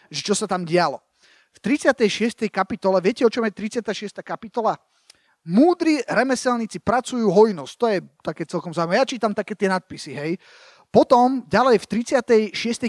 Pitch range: 200-265 Hz